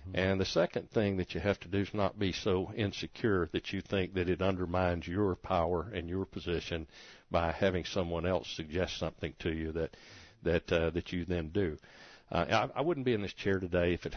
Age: 60-79